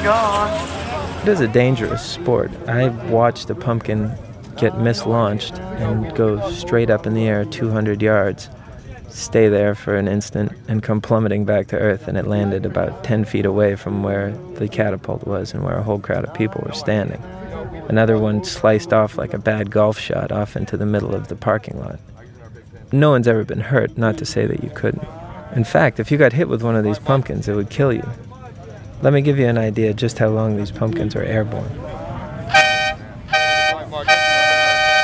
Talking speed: 185 wpm